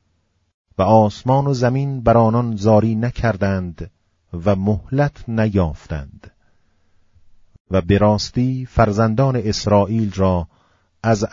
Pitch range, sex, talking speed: 95-115 Hz, male, 90 wpm